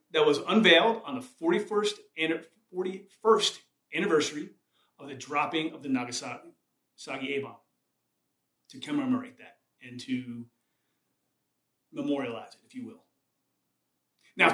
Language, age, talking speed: English, 30-49, 110 wpm